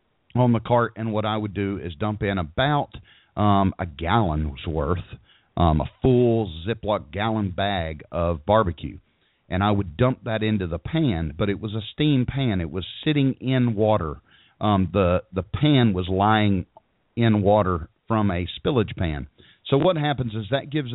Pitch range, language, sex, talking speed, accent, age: 95-120 Hz, English, male, 175 wpm, American, 40-59